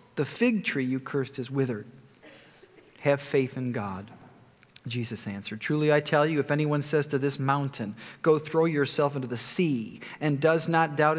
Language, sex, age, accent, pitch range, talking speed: English, male, 40-59, American, 125-155 Hz, 175 wpm